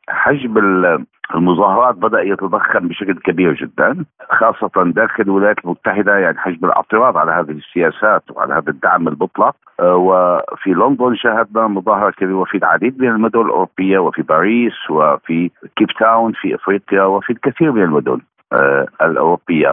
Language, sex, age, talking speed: Arabic, male, 50-69, 130 wpm